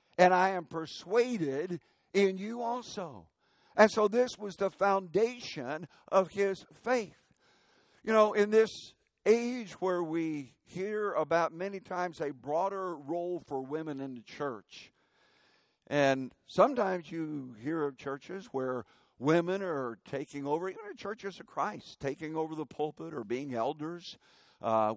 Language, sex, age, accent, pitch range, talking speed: English, male, 60-79, American, 125-200 Hz, 140 wpm